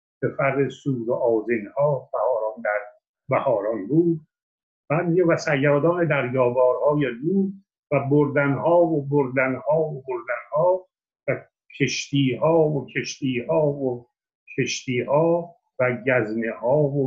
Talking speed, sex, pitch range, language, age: 125 wpm, male, 120-160 Hz, Persian, 60-79